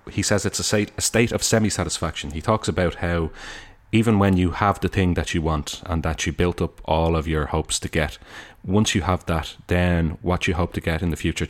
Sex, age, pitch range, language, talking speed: male, 30-49, 85-100 Hz, English, 245 wpm